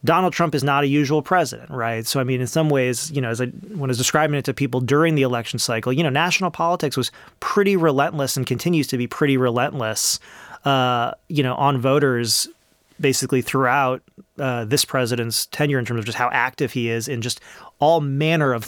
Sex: male